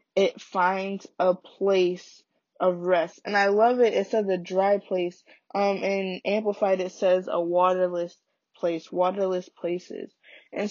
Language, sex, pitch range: English, female, 175-195 Hz